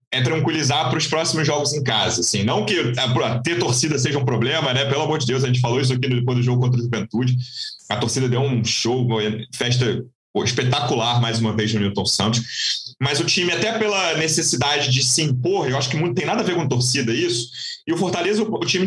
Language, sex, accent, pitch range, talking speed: Portuguese, male, Brazilian, 120-180 Hz, 240 wpm